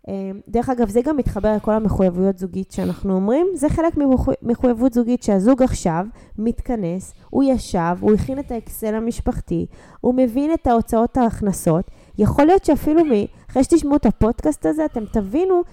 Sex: female